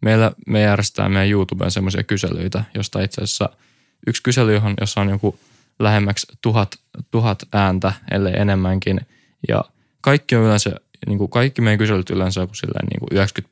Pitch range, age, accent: 95-110 Hz, 20-39, native